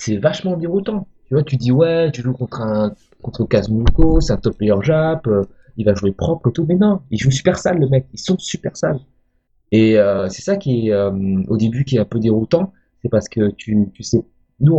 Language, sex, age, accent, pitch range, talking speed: French, male, 30-49, French, 105-145 Hz, 240 wpm